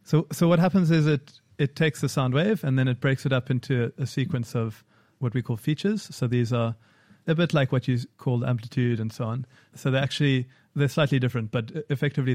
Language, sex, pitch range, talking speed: English, male, 120-140 Hz, 230 wpm